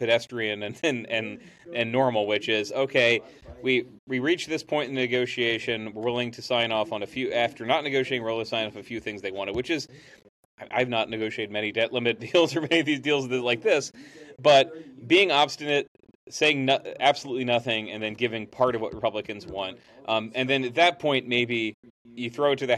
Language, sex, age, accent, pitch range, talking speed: English, male, 30-49, American, 110-135 Hz, 210 wpm